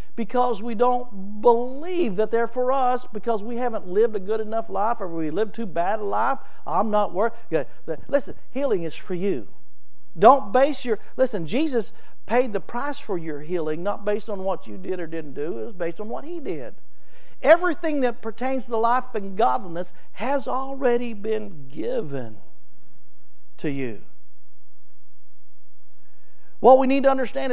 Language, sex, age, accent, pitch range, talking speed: English, male, 50-69, American, 175-245 Hz, 170 wpm